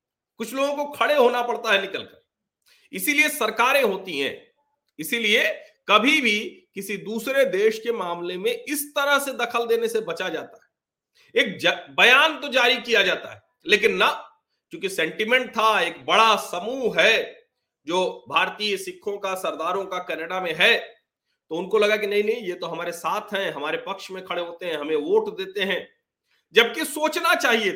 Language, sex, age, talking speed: Hindi, male, 40-59, 175 wpm